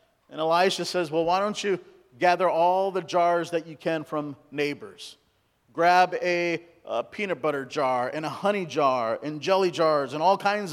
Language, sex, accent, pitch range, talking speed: English, male, American, 150-180 Hz, 180 wpm